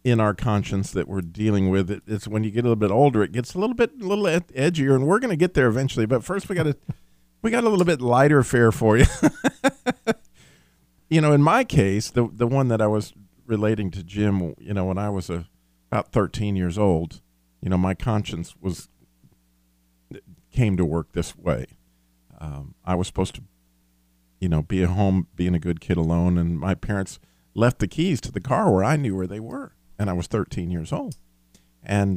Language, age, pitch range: English, 50-69, 85-120 Hz